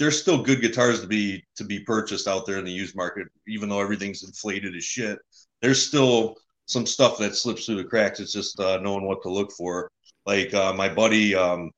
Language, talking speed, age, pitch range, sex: English, 220 wpm, 30-49, 100-120 Hz, male